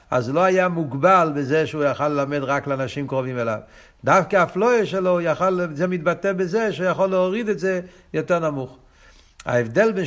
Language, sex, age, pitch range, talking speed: Hebrew, male, 60-79, 115-150 Hz, 165 wpm